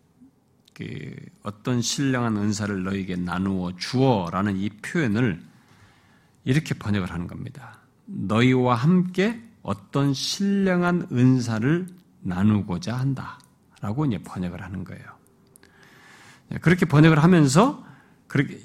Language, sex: Korean, male